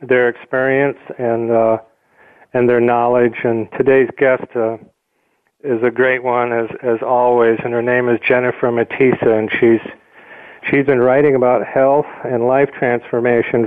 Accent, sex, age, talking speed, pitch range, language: American, male, 40-59, 150 wpm, 115-130 Hz, English